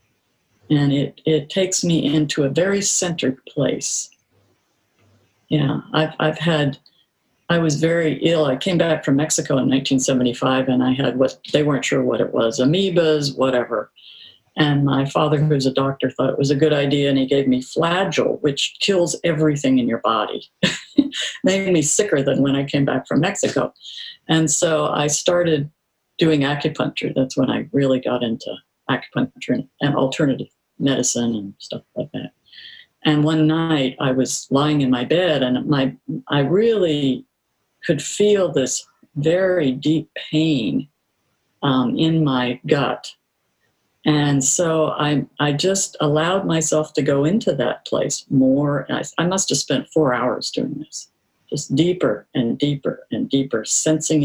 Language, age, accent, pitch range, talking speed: English, 50-69, American, 135-160 Hz, 155 wpm